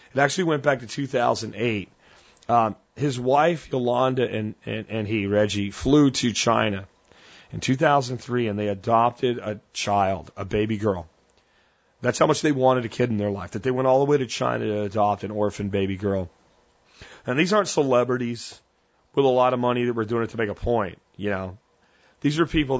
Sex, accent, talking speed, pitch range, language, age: male, American, 195 wpm, 105-130 Hz, English, 40-59